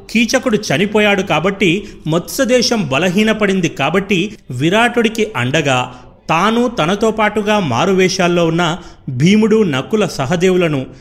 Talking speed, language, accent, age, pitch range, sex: 95 wpm, Telugu, native, 30-49, 145-205 Hz, male